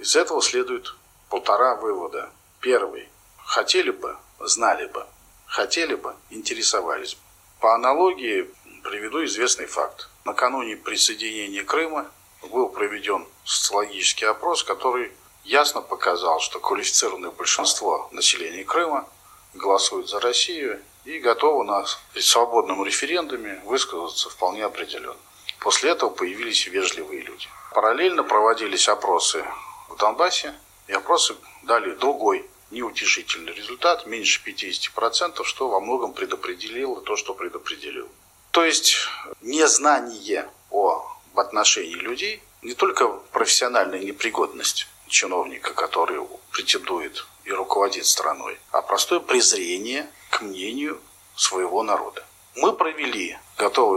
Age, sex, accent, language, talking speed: 40-59, male, native, Russian, 105 wpm